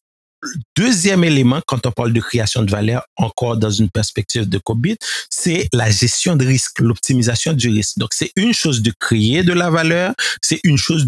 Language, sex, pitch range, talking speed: French, male, 115-145 Hz, 195 wpm